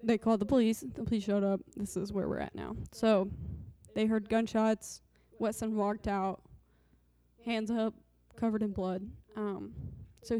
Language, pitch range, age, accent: English, 190-220 Hz, 20-39, American